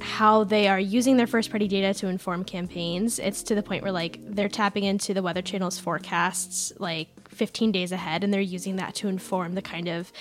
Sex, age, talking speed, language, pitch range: female, 10-29, 215 wpm, English, 180-210 Hz